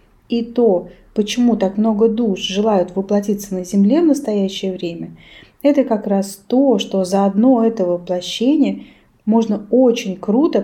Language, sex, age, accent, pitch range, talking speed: Russian, female, 20-39, native, 190-245 Hz, 140 wpm